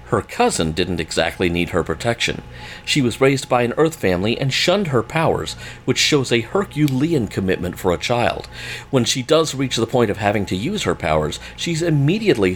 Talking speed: 190 wpm